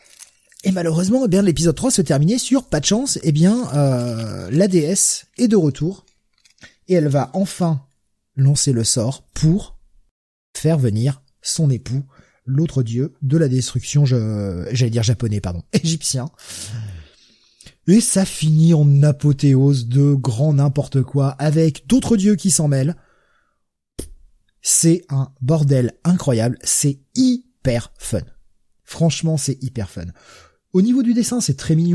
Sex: male